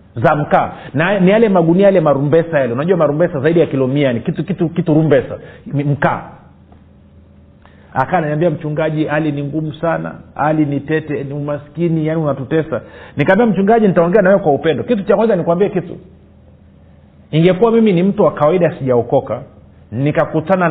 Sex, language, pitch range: male, Swahili, 125-180 Hz